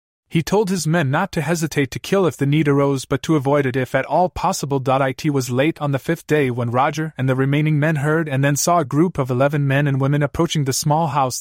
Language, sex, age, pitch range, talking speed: English, male, 30-49, 120-160 Hz, 260 wpm